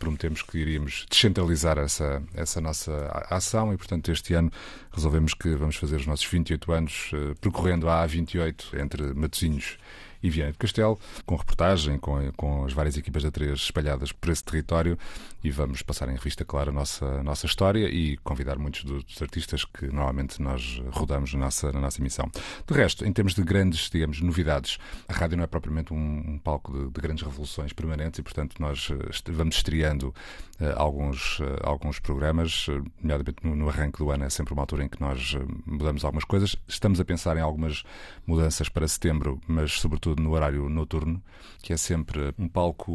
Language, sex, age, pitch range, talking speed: Portuguese, male, 30-49, 75-85 Hz, 190 wpm